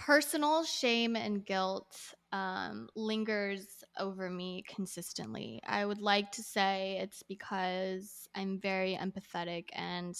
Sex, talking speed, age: female, 120 wpm, 20-39